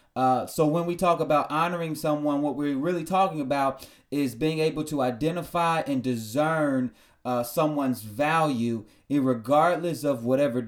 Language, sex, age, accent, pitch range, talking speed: English, male, 30-49, American, 145-180 Hz, 145 wpm